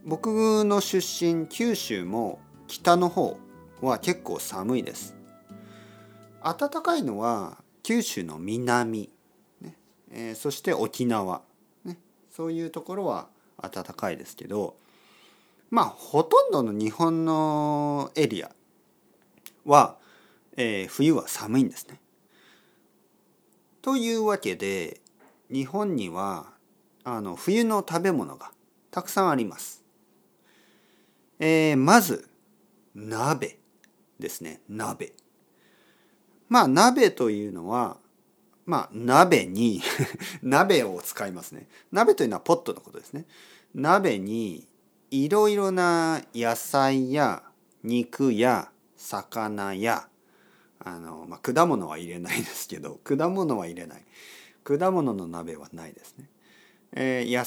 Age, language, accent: 40-59, Japanese, native